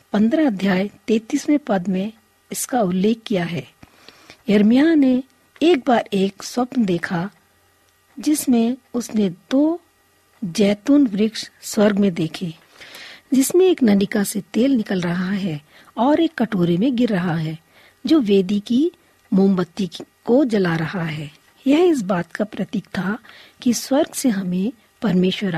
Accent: native